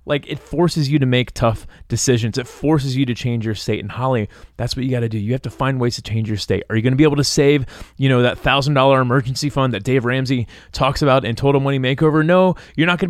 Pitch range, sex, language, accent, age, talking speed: 115-155 Hz, male, English, American, 30-49, 270 wpm